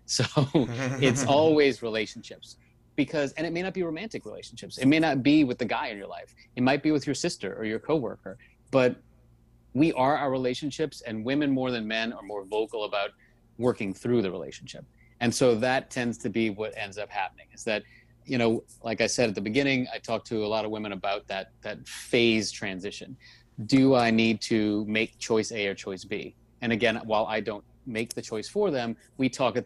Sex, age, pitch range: male, 30-49, 110-125 Hz